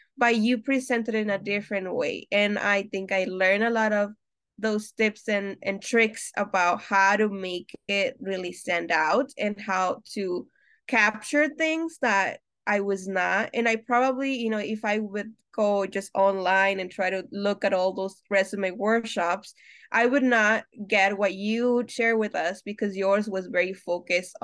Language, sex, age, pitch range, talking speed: English, female, 20-39, 190-230 Hz, 175 wpm